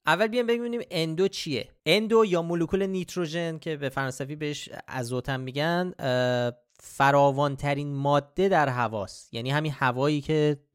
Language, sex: Persian, male